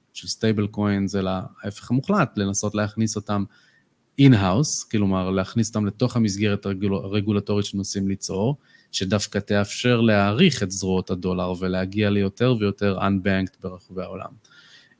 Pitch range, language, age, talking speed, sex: 95-115 Hz, Hebrew, 20-39, 130 wpm, male